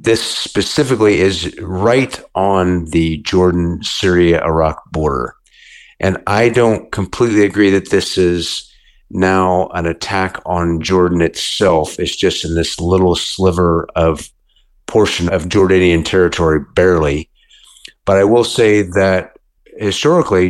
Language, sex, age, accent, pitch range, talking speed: English, male, 50-69, American, 80-95 Hz, 115 wpm